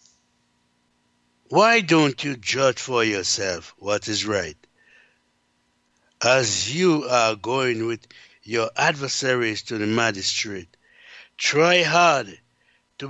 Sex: male